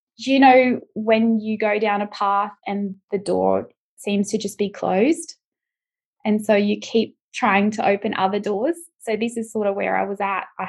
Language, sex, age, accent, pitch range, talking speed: English, female, 20-39, Australian, 195-240 Hz, 200 wpm